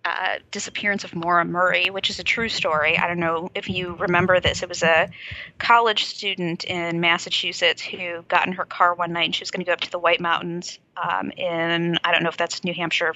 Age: 20-39